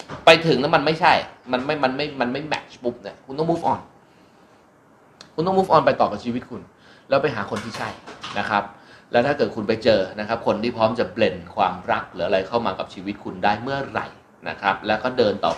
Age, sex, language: 30-49, male, Thai